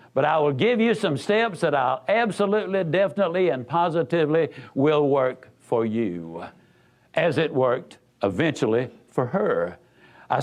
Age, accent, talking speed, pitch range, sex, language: 60-79, American, 140 wpm, 165-225 Hz, male, English